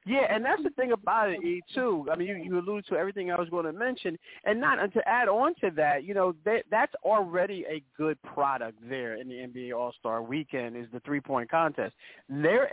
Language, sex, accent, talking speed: English, male, American, 230 wpm